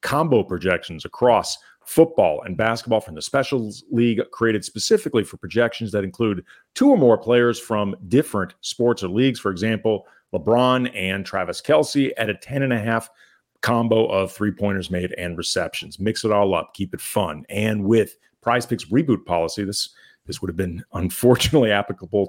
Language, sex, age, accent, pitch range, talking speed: English, male, 40-59, American, 100-125 Hz, 170 wpm